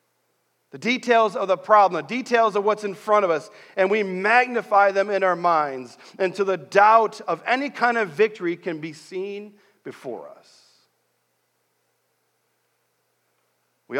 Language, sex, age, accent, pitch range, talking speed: English, male, 40-59, American, 135-210 Hz, 145 wpm